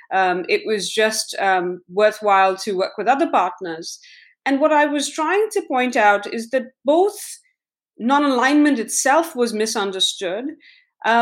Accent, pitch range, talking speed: Indian, 210-295 Hz, 145 wpm